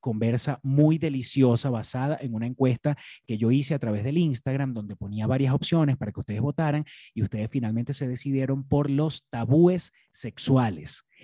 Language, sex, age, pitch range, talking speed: Spanish, male, 30-49, 115-145 Hz, 165 wpm